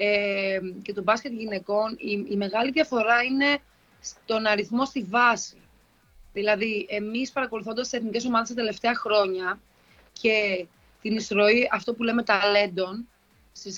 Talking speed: 130 wpm